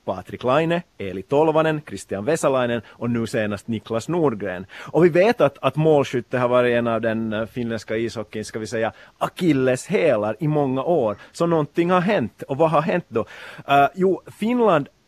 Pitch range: 115-160 Hz